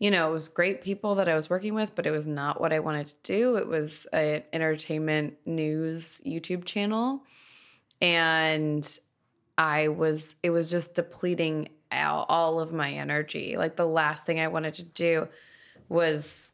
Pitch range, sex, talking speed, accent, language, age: 155-175 Hz, female, 175 wpm, American, English, 20-39